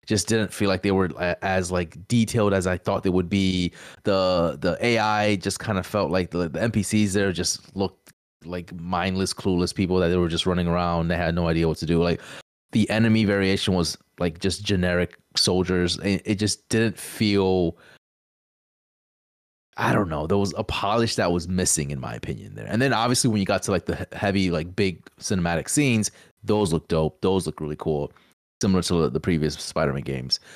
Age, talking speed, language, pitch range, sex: 20-39, 200 wpm, English, 85-105 Hz, male